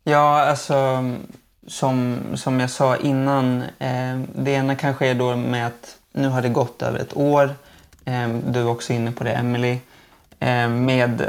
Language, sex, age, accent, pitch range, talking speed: Swedish, male, 20-39, native, 120-135 Hz, 170 wpm